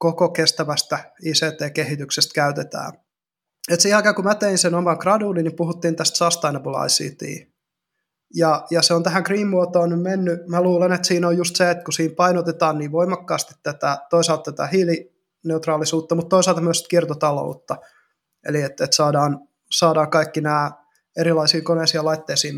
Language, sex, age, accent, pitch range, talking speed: Finnish, male, 20-39, native, 155-180 Hz, 145 wpm